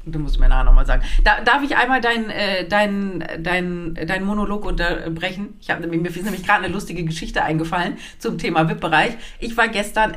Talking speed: 195 wpm